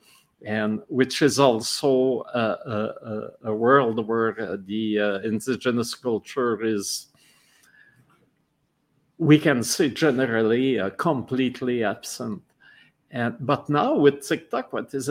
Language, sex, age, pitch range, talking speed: French, male, 50-69, 115-145 Hz, 105 wpm